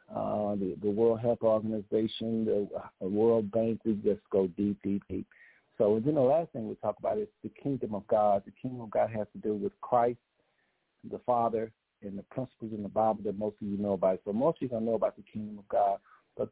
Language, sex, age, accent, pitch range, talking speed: English, male, 50-69, American, 105-125 Hz, 230 wpm